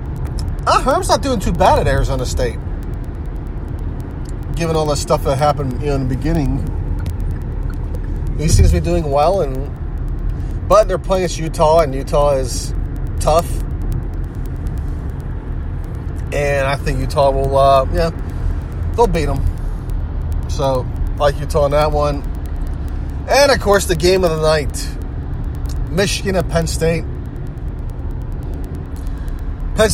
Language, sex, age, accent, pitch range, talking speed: English, male, 30-49, American, 75-100 Hz, 130 wpm